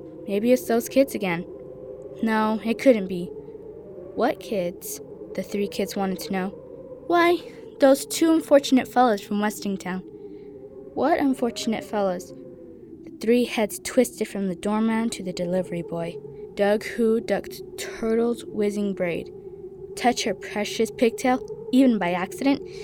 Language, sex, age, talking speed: English, female, 10-29, 135 wpm